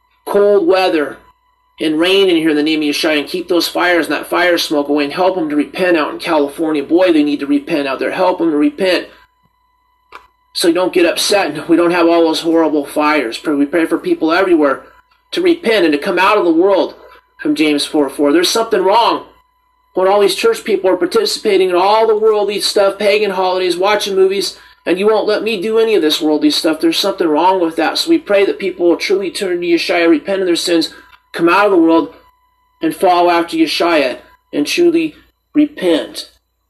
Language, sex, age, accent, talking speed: English, male, 30-49, American, 215 wpm